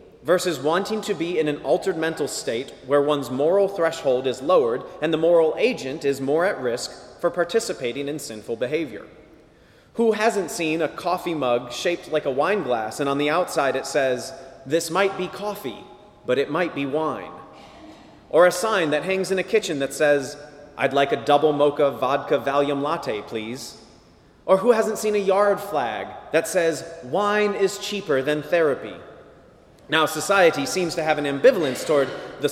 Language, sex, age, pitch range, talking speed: English, male, 30-49, 140-190 Hz, 175 wpm